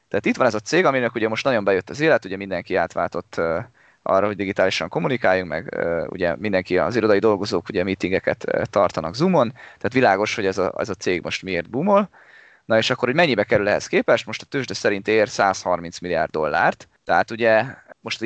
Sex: male